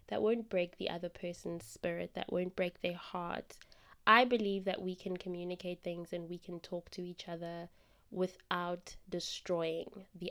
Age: 20-39